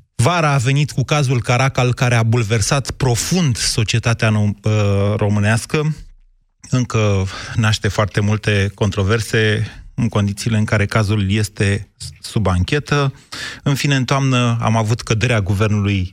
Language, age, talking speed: Romanian, 30-49, 125 wpm